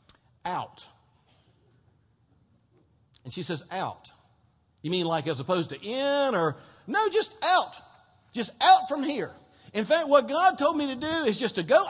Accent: American